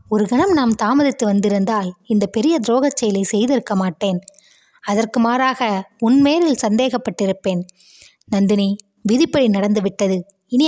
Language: Tamil